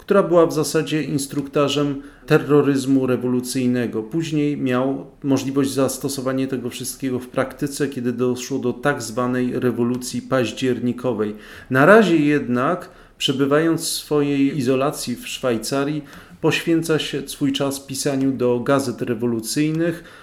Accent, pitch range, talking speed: native, 125-145 Hz, 115 wpm